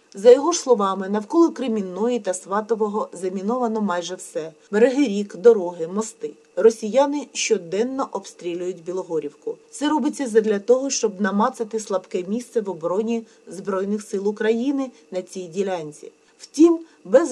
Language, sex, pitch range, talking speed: Ukrainian, female, 200-265 Hz, 130 wpm